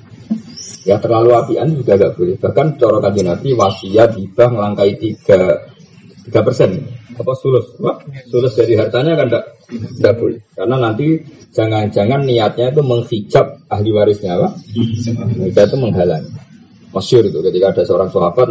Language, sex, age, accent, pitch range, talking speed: Indonesian, male, 30-49, native, 110-150 Hz, 140 wpm